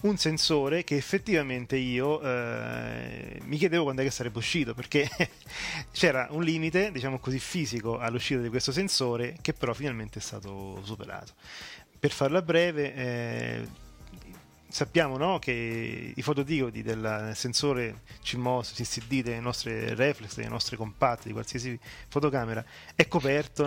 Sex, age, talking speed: male, 30-49, 135 wpm